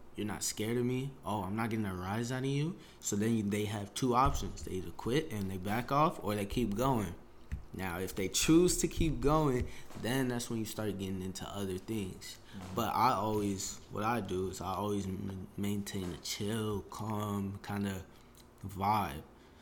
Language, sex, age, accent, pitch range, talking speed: English, male, 20-39, American, 95-120 Hz, 195 wpm